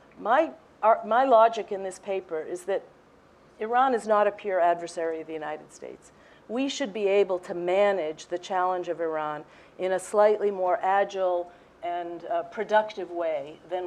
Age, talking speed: 50-69, 165 wpm